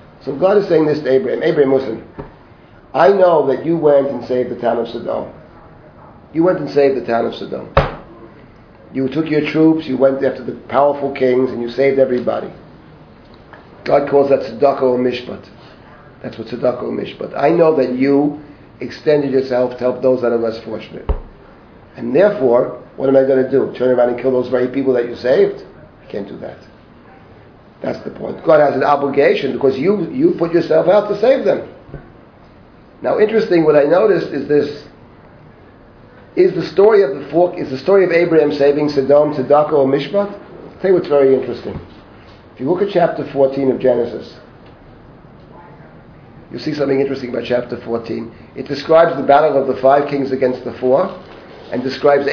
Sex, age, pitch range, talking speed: male, 40-59, 125-150 Hz, 185 wpm